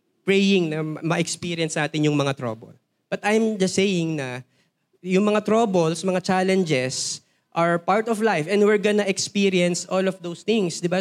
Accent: native